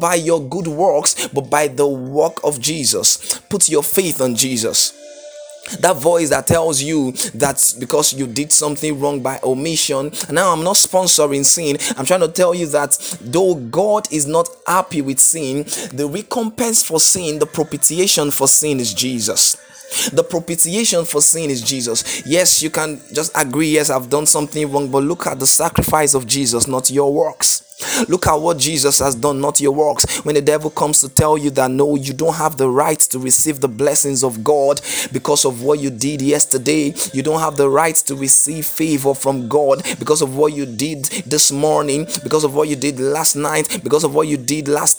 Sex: male